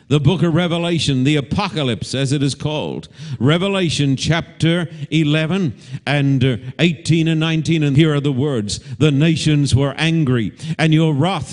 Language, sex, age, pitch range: English, male, 50-69, 145-180 Hz